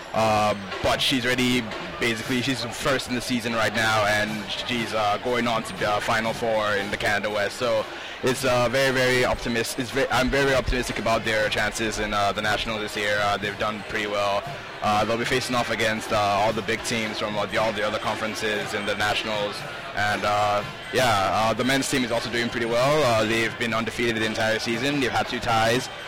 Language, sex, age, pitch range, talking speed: English, male, 20-39, 110-125 Hz, 210 wpm